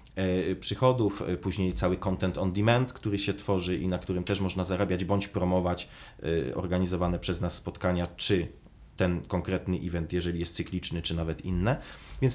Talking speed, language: 155 wpm, Polish